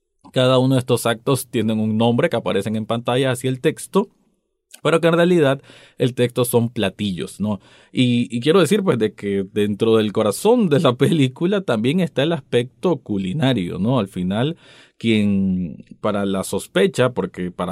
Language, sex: Spanish, male